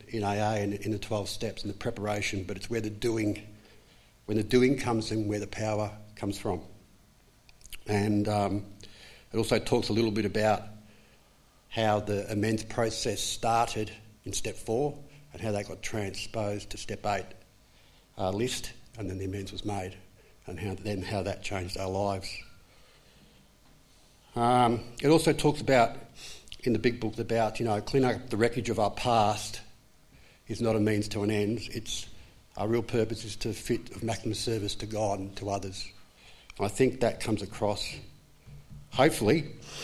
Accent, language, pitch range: Australian, English, 100-115 Hz